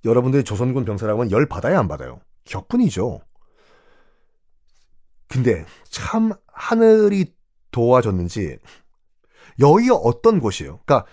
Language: Korean